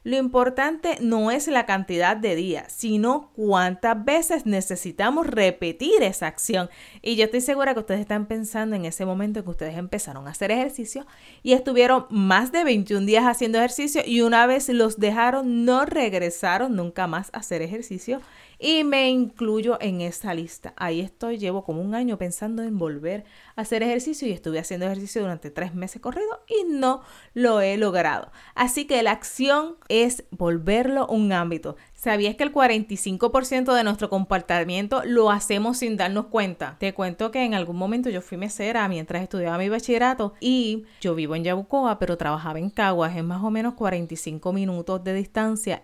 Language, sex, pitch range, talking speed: Spanish, female, 190-255 Hz, 175 wpm